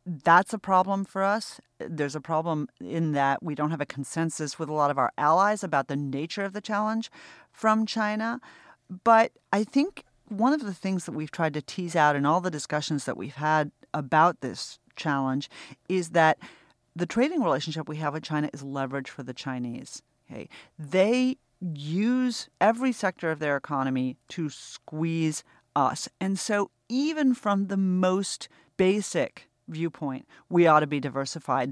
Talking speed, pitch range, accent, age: 170 wpm, 145-190 Hz, American, 40-59